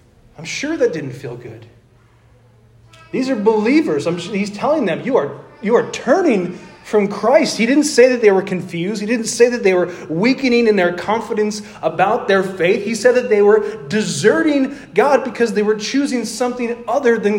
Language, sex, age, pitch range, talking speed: English, male, 30-49, 140-225 Hz, 180 wpm